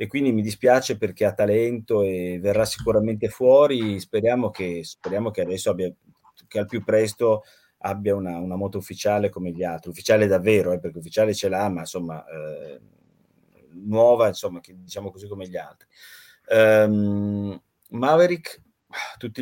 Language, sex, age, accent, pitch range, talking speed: Italian, male, 30-49, native, 100-125 Hz, 155 wpm